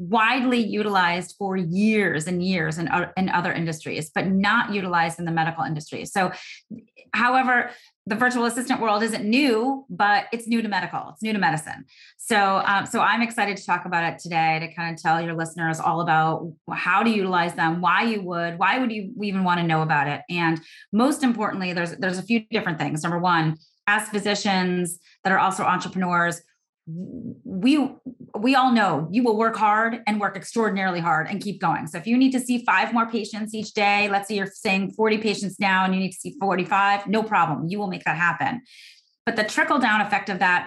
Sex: female